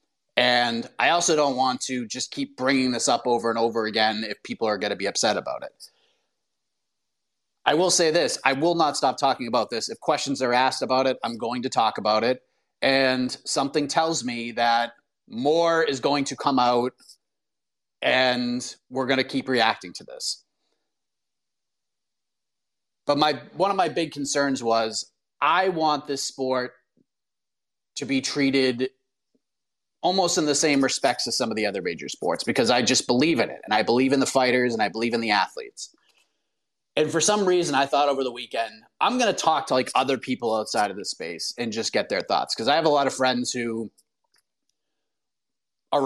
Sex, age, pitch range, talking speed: male, 30-49, 120-145 Hz, 190 wpm